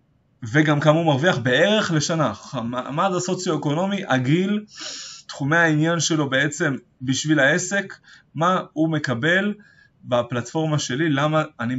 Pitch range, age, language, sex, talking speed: 125-165 Hz, 20-39, Hebrew, male, 105 wpm